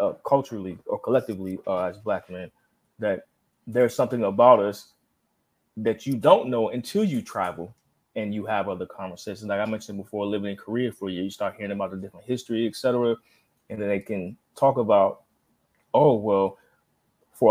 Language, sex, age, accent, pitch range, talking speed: English, male, 20-39, American, 100-130 Hz, 180 wpm